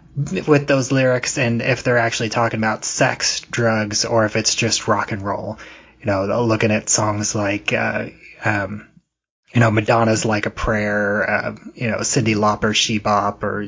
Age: 20-39